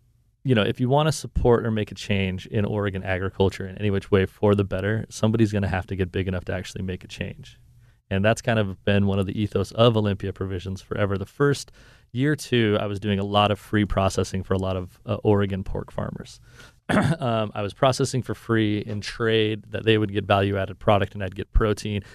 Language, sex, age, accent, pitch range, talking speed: English, male, 30-49, American, 100-115 Hz, 230 wpm